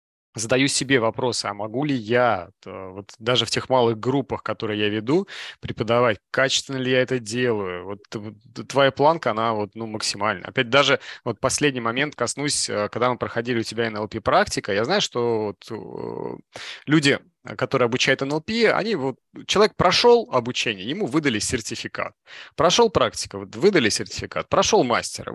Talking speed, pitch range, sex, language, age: 150 wpm, 110-140 Hz, male, Russian, 30-49